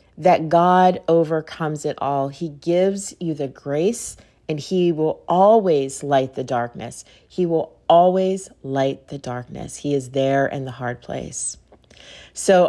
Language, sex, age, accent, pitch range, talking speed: English, female, 40-59, American, 150-185 Hz, 145 wpm